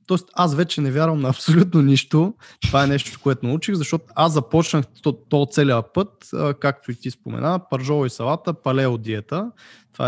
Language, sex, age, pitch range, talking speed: Bulgarian, male, 20-39, 120-170 Hz, 180 wpm